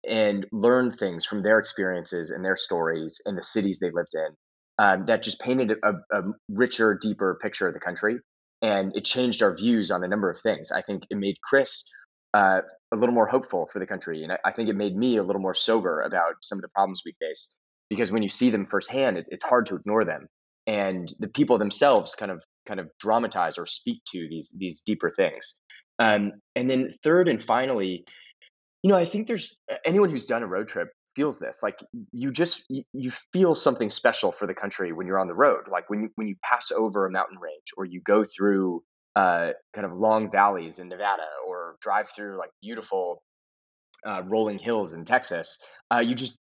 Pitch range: 95-125 Hz